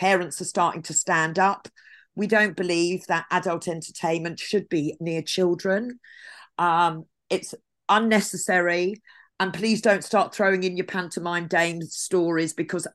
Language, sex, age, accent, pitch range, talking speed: English, female, 40-59, British, 155-195 Hz, 140 wpm